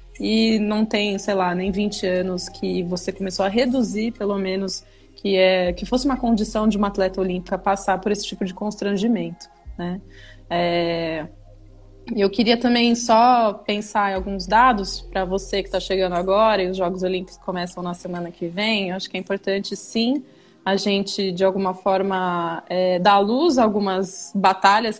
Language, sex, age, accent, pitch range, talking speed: Portuguese, female, 20-39, Brazilian, 190-220 Hz, 170 wpm